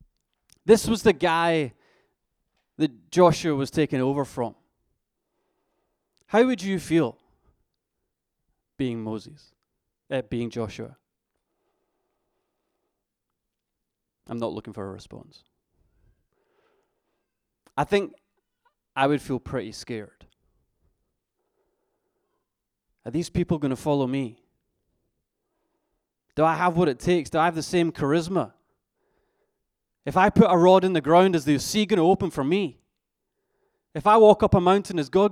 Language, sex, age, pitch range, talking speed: English, male, 20-39, 120-180 Hz, 125 wpm